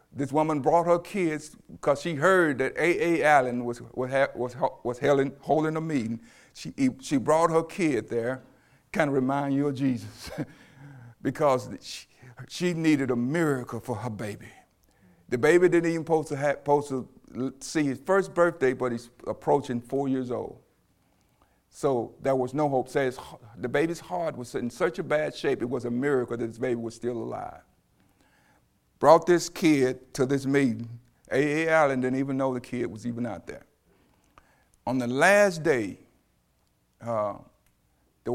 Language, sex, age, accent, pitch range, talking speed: English, male, 50-69, American, 125-155 Hz, 165 wpm